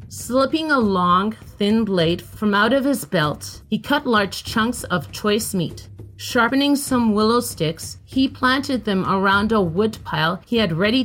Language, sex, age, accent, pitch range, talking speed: English, female, 40-59, American, 175-240 Hz, 165 wpm